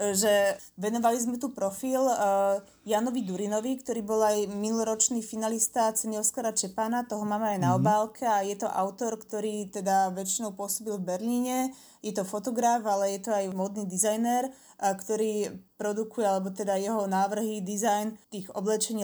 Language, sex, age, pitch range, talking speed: Slovak, female, 20-39, 195-220 Hz, 150 wpm